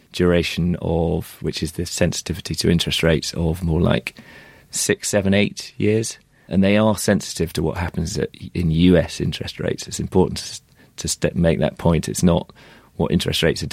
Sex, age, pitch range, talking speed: male, 30-49, 80-95 Hz, 175 wpm